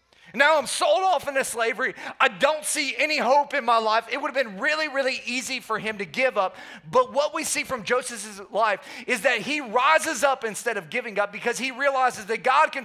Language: English